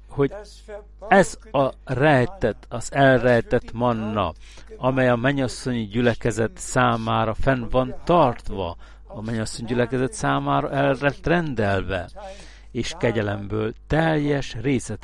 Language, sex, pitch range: Hungarian, male, 105-135 Hz